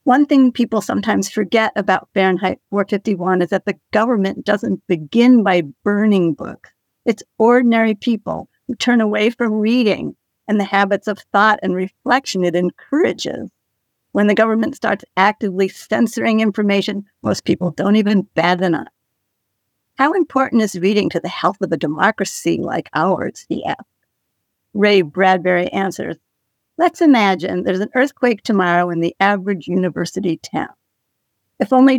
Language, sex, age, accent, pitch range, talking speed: English, female, 50-69, American, 185-225 Hz, 150 wpm